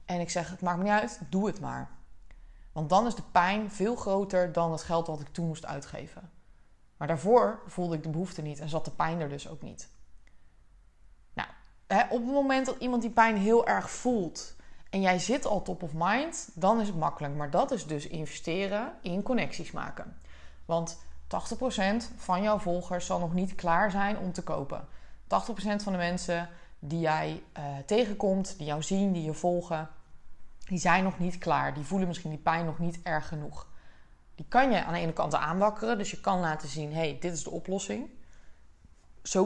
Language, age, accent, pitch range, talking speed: Dutch, 20-39, Dutch, 155-200 Hz, 200 wpm